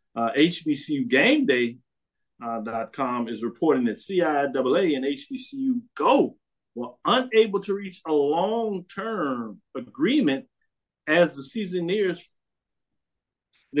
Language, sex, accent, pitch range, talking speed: English, male, American, 140-215 Hz, 105 wpm